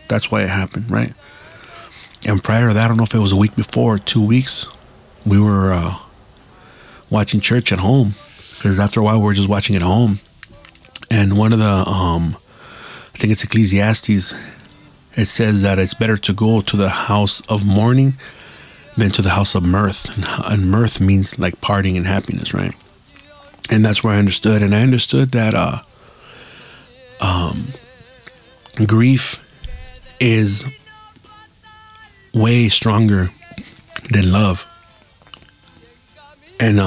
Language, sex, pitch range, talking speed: English, male, 95-115 Hz, 145 wpm